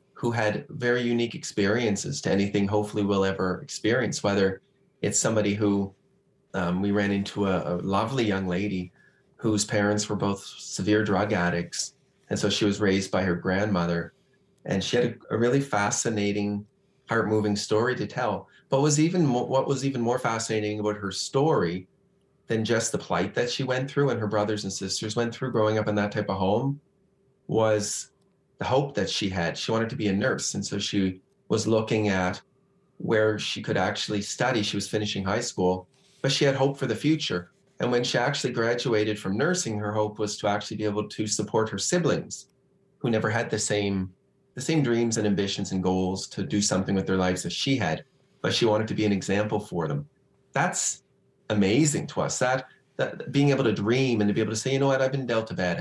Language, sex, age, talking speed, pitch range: English, male, 30-49, 205 wpm, 100-120 Hz